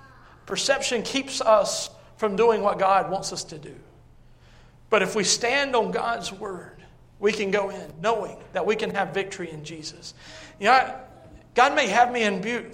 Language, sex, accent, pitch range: English, male, American, 190-245 Hz